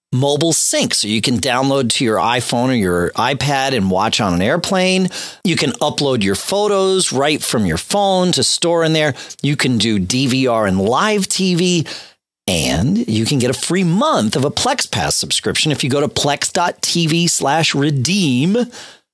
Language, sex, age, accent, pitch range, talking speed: English, male, 40-59, American, 130-195 Hz, 170 wpm